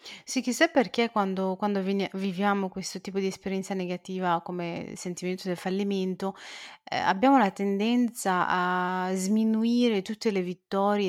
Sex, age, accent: female, 30-49, native